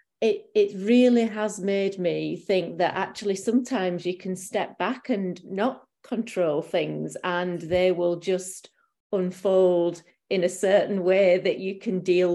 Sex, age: female, 40-59